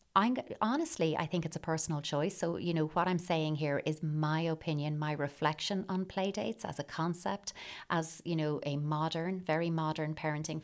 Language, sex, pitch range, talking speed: English, female, 150-170 Hz, 190 wpm